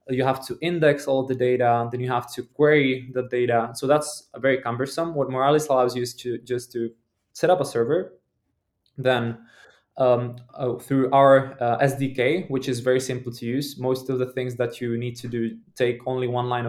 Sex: male